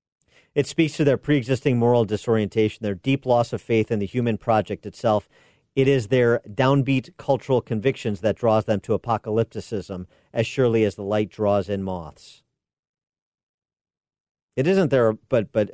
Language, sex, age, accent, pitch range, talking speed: English, male, 50-69, American, 100-125 Hz, 155 wpm